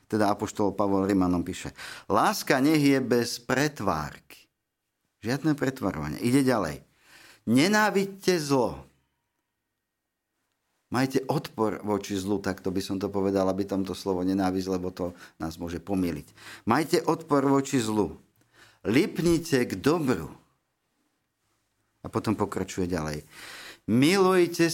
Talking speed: 115 wpm